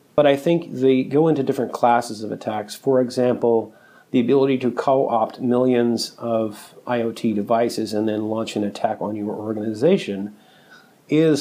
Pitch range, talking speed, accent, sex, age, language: 105-125 Hz, 155 wpm, American, male, 40-59, English